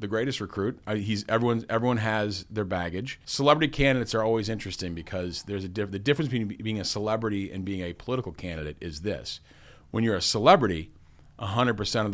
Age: 40-59